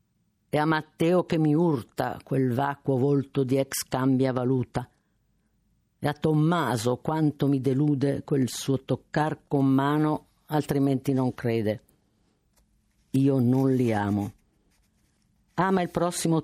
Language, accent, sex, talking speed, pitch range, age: Italian, native, female, 130 wpm, 115-150 Hz, 50-69